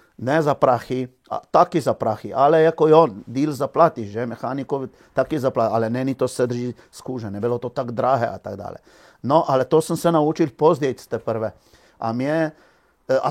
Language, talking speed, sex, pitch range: Czech, 165 wpm, male, 115-150 Hz